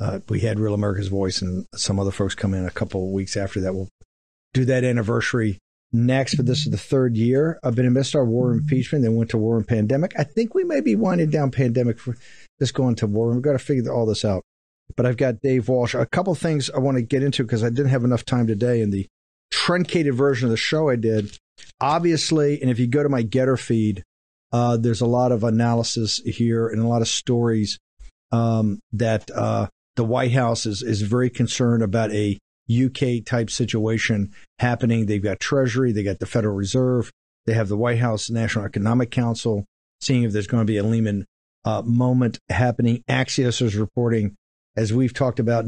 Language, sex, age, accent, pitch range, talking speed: English, male, 50-69, American, 110-125 Hz, 215 wpm